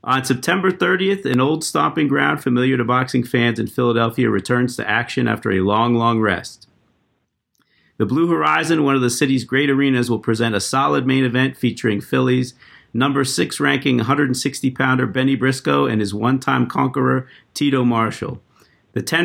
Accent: American